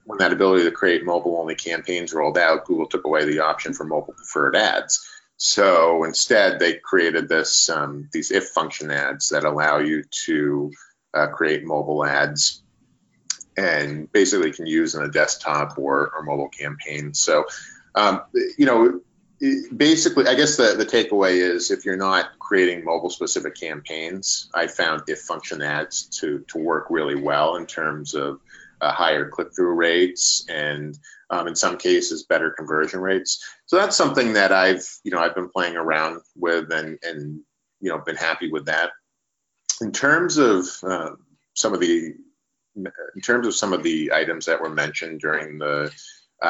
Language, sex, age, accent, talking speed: English, male, 40-59, American, 165 wpm